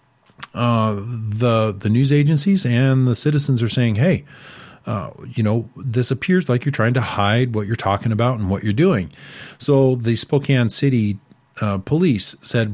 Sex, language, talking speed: male, English, 170 wpm